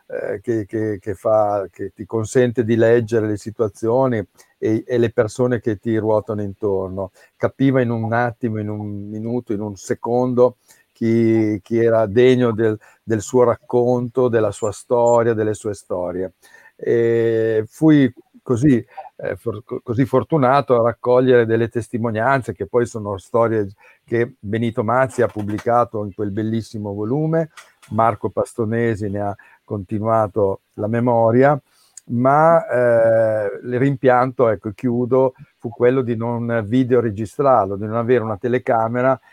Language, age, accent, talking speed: Italian, 50-69, native, 135 wpm